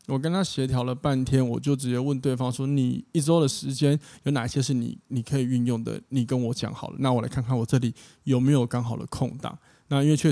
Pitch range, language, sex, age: 125-155 Hz, Chinese, male, 20-39